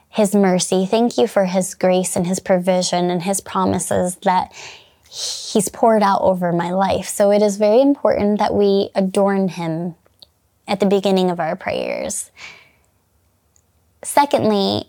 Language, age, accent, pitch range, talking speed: English, 20-39, American, 185-215 Hz, 145 wpm